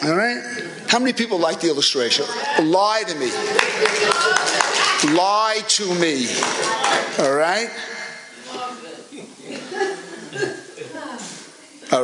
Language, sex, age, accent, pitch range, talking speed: English, male, 50-69, American, 165-205 Hz, 85 wpm